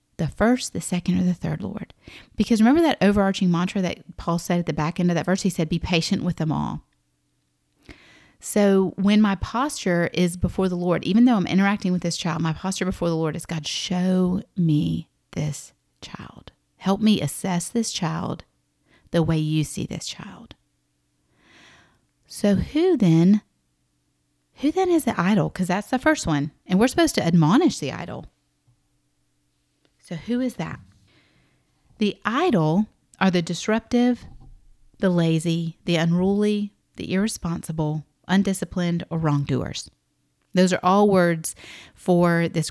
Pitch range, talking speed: 160-210 Hz, 155 wpm